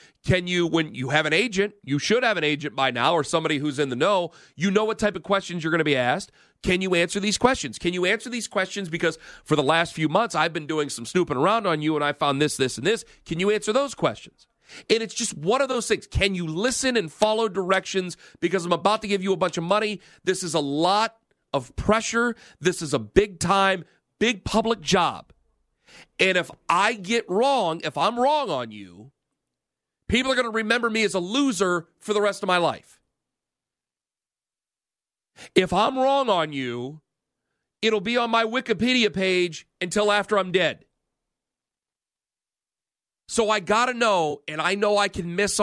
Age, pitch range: 40-59, 165-220 Hz